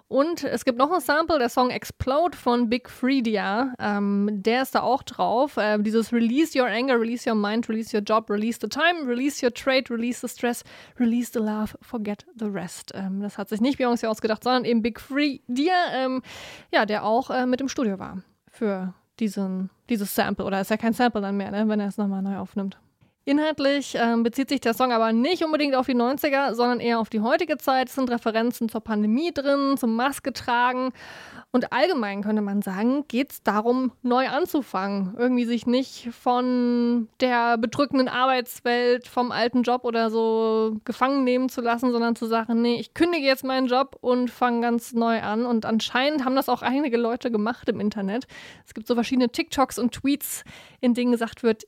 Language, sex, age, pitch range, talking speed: German, female, 20-39, 220-260 Hz, 200 wpm